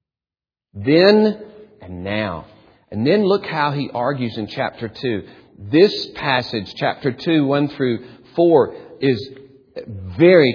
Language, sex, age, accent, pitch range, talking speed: English, male, 40-59, American, 125-175 Hz, 120 wpm